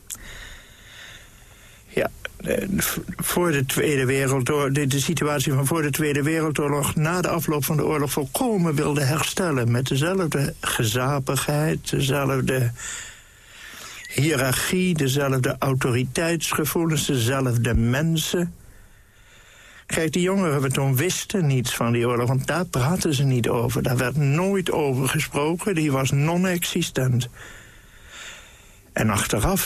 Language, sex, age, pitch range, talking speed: Dutch, male, 60-79, 125-155 Hz, 115 wpm